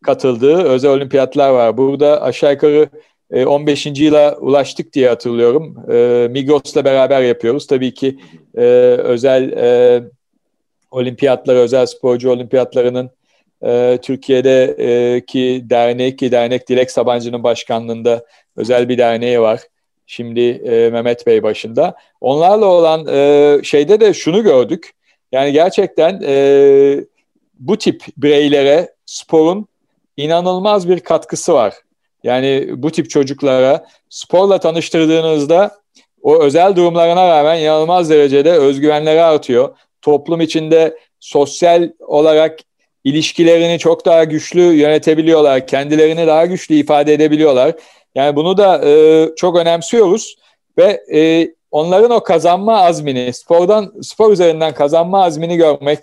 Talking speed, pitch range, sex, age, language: 105 wpm, 130-165 Hz, male, 40-59, Turkish